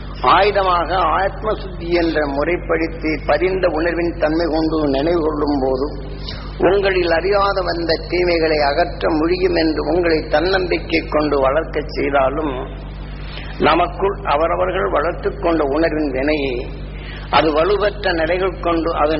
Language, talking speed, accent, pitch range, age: Tamil, 95 wpm, native, 140-175 Hz, 50-69